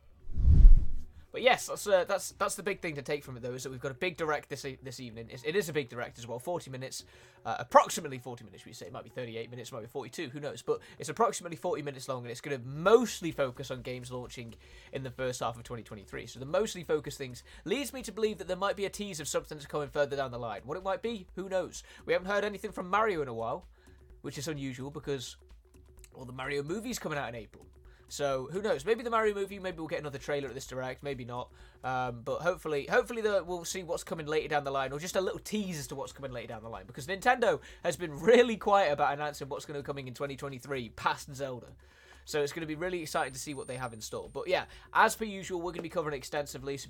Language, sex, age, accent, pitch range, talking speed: Italian, male, 20-39, British, 125-180 Hz, 265 wpm